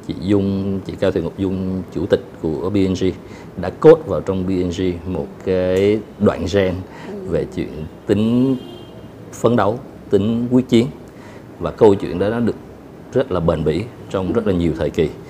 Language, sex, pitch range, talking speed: Vietnamese, male, 85-105 Hz, 175 wpm